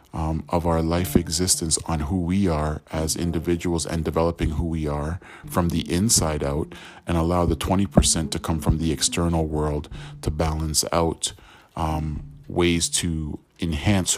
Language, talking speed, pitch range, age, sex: English, 155 wpm, 80-90 Hz, 40-59, male